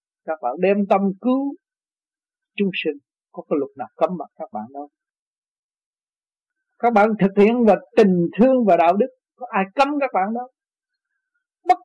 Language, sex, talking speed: Vietnamese, male, 160 wpm